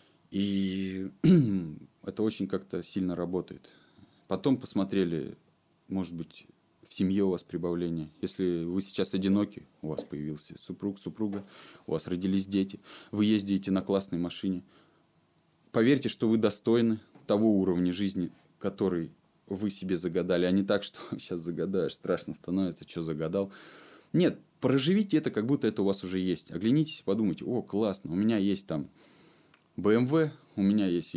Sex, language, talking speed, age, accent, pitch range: male, Russian, 150 wpm, 20-39, native, 90-105 Hz